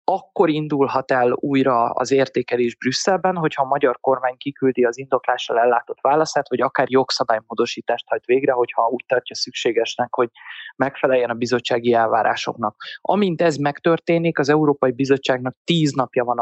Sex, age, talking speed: male, 20-39, 145 wpm